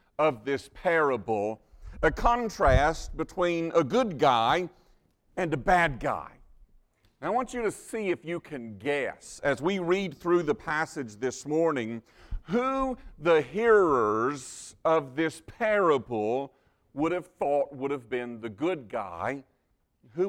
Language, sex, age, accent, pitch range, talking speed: English, male, 50-69, American, 135-210 Hz, 135 wpm